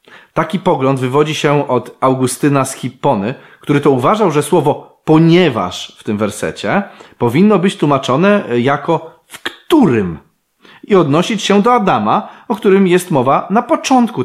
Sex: male